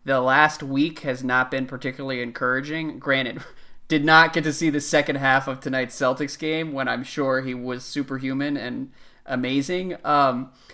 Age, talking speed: 20-39, 170 wpm